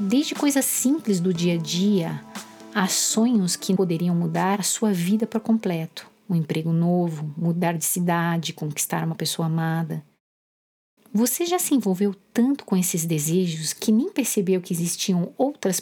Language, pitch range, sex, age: Portuguese, 170-215 Hz, female, 50-69